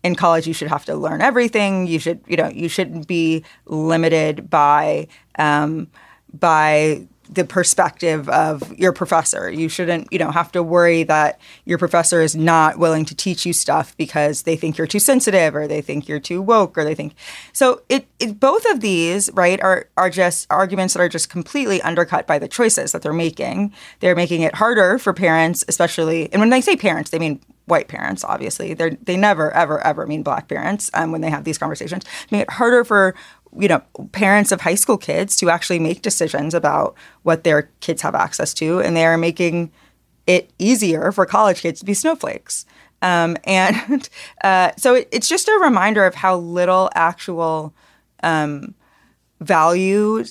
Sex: female